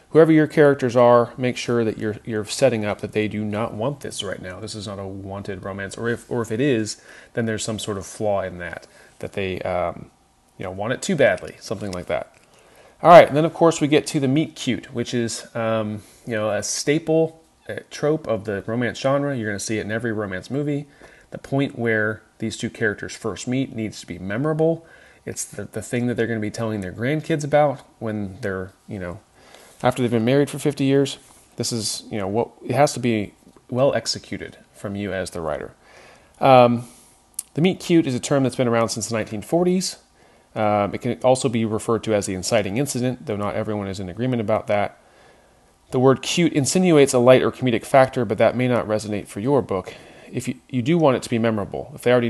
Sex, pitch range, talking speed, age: male, 105-135 Hz, 225 wpm, 30-49